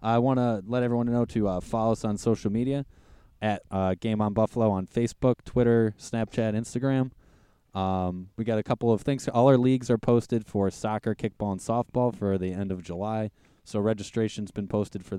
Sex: male